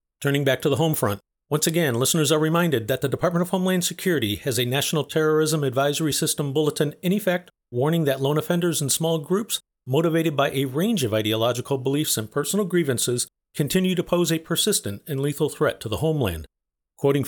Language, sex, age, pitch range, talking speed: English, male, 40-59, 135-175 Hz, 190 wpm